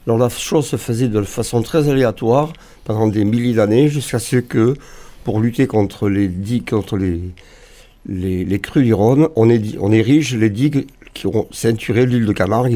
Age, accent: 60-79, French